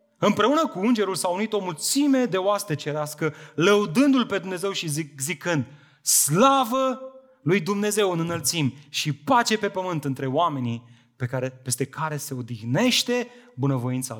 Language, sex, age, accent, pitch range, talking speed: Romanian, male, 30-49, native, 125-170 Hz, 145 wpm